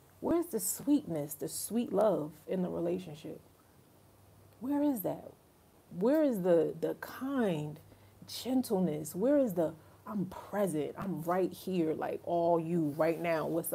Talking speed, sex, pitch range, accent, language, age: 140 wpm, female, 160-210 Hz, American, English, 30-49